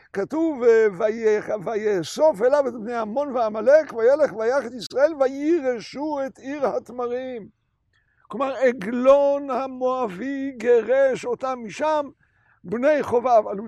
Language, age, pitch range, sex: Hebrew, 60-79, 225-295 Hz, male